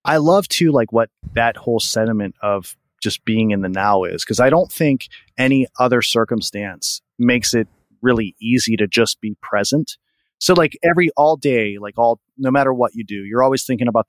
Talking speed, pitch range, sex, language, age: 195 wpm, 105-135 Hz, male, English, 30-49